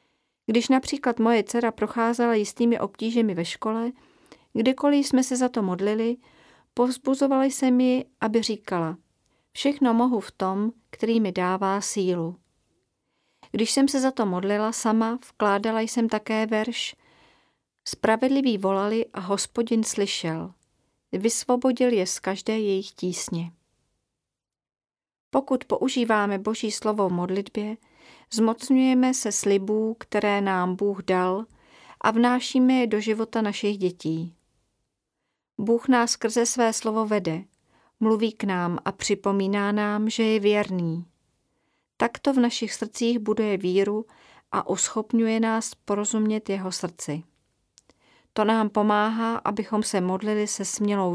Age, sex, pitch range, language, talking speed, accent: 40-59, female, 200-235 Hz, Czech, 125 wpm, native